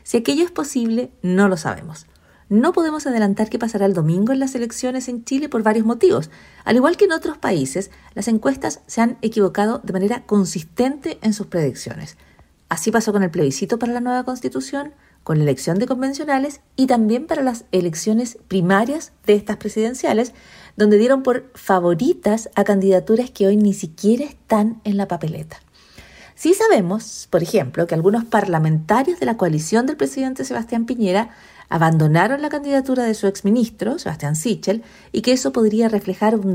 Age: 40-59